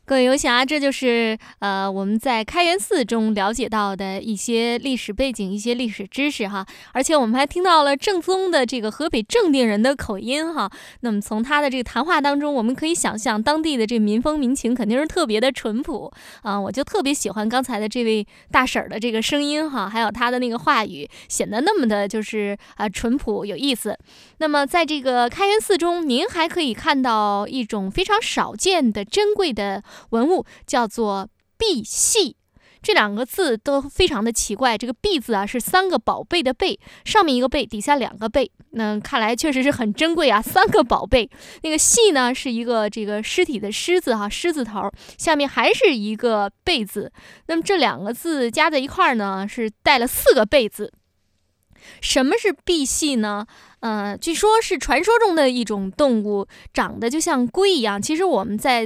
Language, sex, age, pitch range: Chinese, female, 20-39, 220-310 Hz